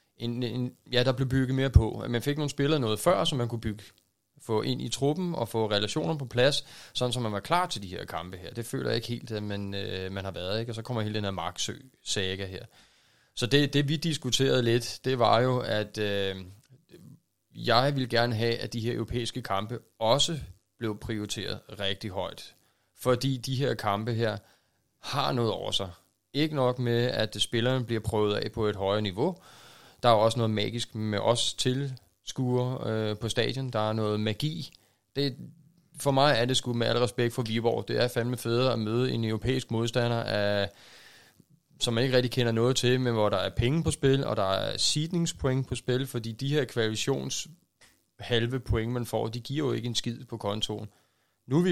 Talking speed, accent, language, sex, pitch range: 210 wpm, native, Danish, male, 105-130 Hz